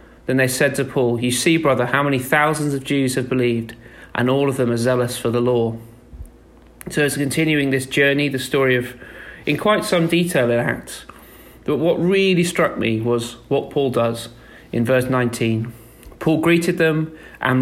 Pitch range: 120-150 Hz